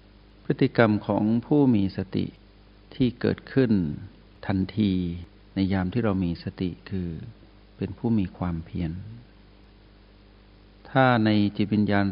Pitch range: 95-110 Hz